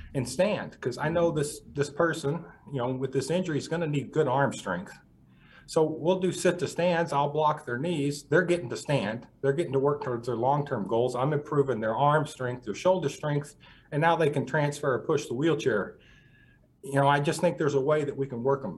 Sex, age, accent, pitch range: male, 40-59, American, 125-150 Hz